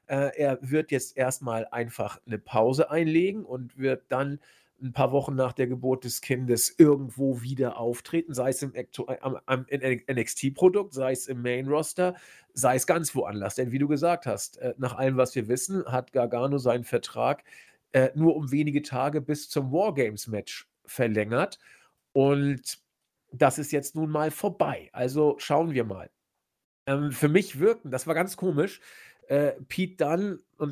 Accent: German